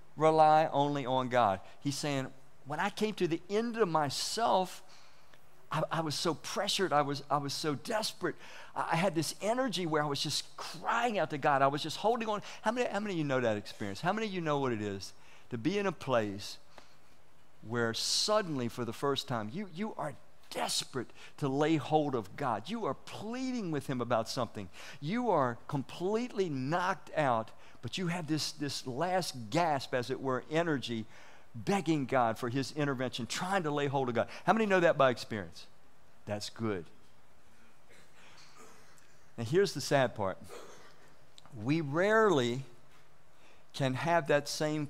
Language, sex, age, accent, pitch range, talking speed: English, male, 50-69, American, 120-165 Hz, 180 wpm